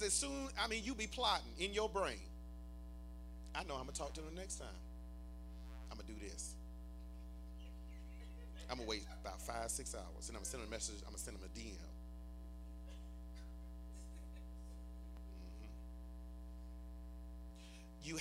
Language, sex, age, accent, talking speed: English, male, 30-49, American, 170 wpm